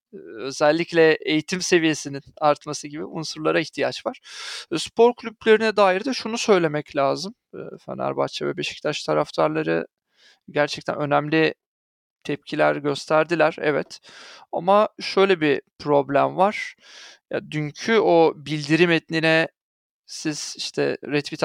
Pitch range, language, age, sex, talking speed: 145-175 Hz, Turkish, 40-59, male, 105 wpm